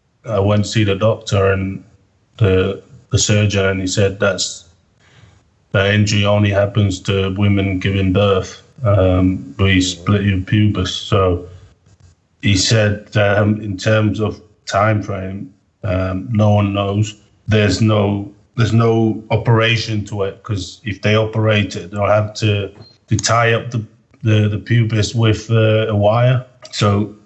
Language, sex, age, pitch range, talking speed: English, male, 30-49, 100-110 Hz, 150 wpm